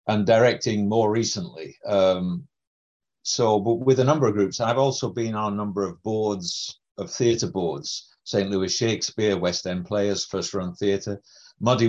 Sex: male